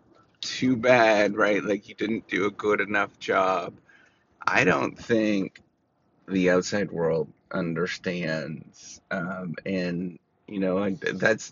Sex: male